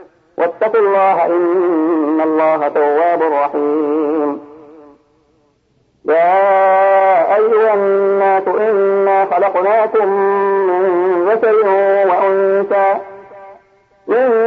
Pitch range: 155-190 Hz